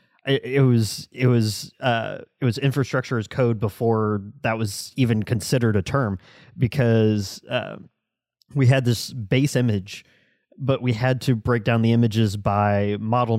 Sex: male